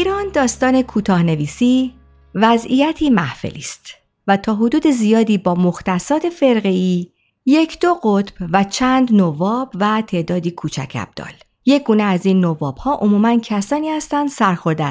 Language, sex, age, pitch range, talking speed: Persian, female, 50-69, 175-275 Hz, 135 wpm